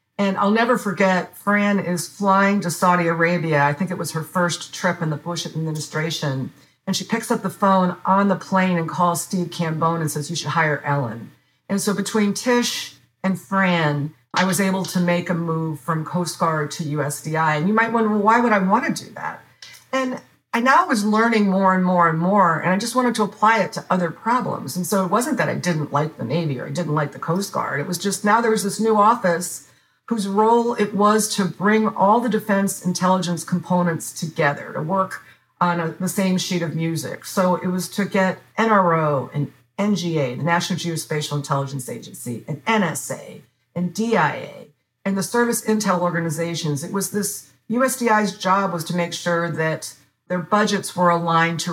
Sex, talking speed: female, 200 wpm